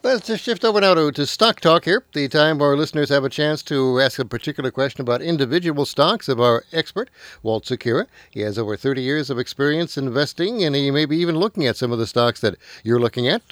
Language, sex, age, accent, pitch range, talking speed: English, male, 60-79, American, 120-155 Hz, 235 wpm